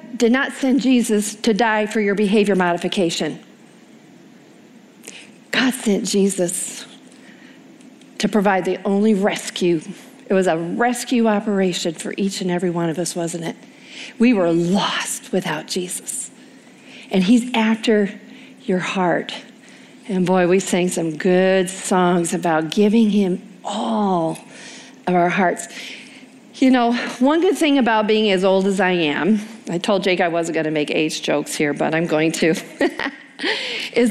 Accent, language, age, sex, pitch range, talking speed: American, English, 40-59, female, 185-250 Hz, 150 wpm